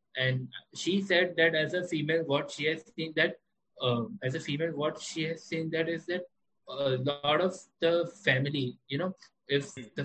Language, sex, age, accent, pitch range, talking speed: English, male, 20-39, Indian, 140-160 Hz, 190 wpm